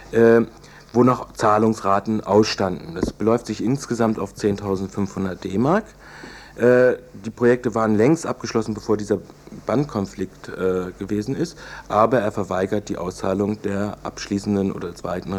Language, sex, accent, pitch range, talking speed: German, male, German, 100-120 Hz, 130 wpm